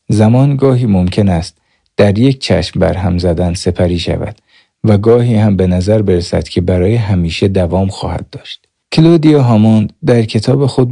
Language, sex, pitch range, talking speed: Persian, male, 90-115 Hz, 155 wpm